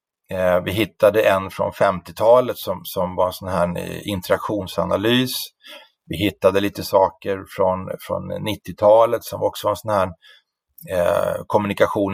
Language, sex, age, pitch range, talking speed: Swedish, male, 30-49, 95-110 Hz, 135 wpm